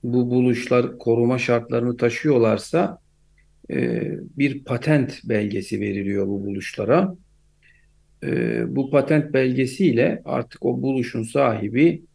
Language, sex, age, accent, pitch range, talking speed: Turkish, male, 50-69, native, 100-140 Hz, 90 wpm